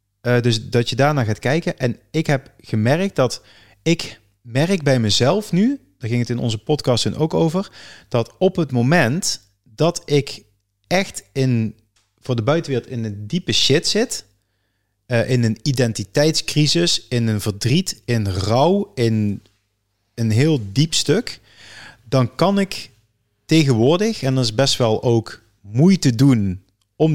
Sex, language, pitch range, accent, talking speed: male, Dutch, 110-150 Hz, Dutch, 150 wpm